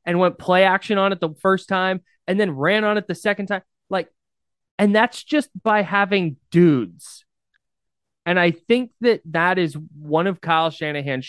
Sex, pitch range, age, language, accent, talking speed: male, 145-180 Hz, 20-39, English, American, 180 wpm